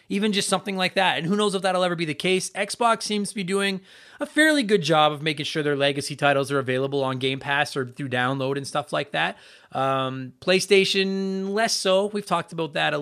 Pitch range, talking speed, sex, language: 135-190 Hz, 230 wpm, male, English